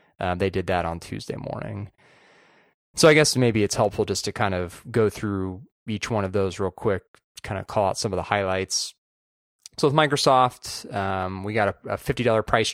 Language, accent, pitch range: English, American, 95-125 Hz